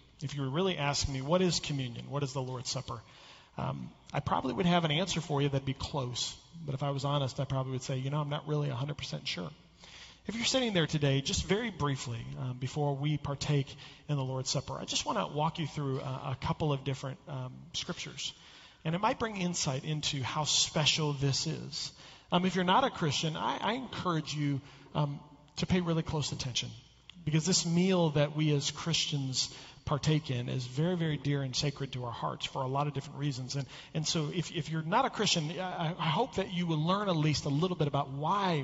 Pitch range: 135-170 Hz